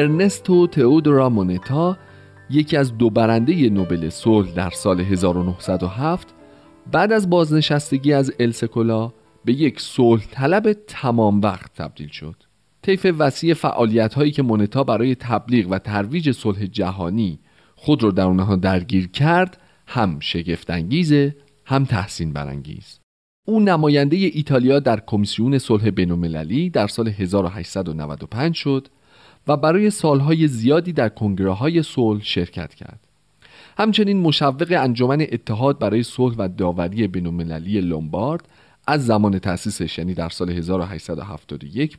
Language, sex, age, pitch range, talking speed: Persian, male, 40-59, 95-145 Hz, 125 wpm